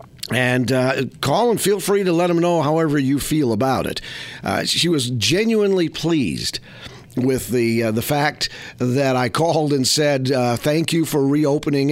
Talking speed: 175 wpm